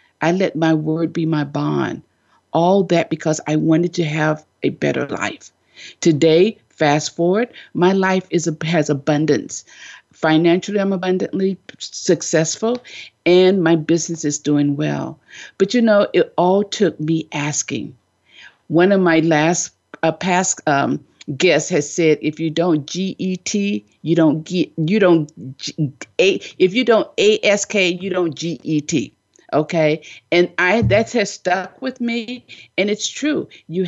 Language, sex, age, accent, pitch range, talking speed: English, female, 50-69, American, 155-200 Hz, 145 wpm